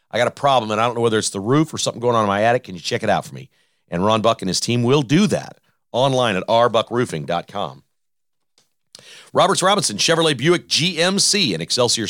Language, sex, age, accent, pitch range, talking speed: English, male, 40-59, American, 115-170 Hz, 225 wpm